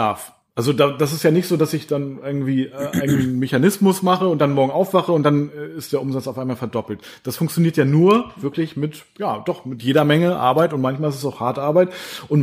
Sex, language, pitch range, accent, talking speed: male, German, 130-170 Hz, German, 215 wpm